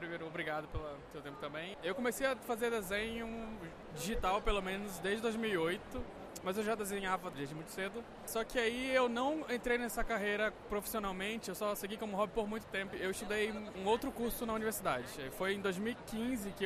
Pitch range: 180-225 Hz